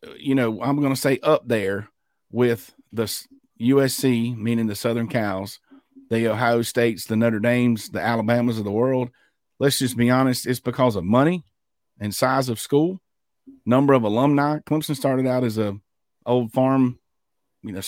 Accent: American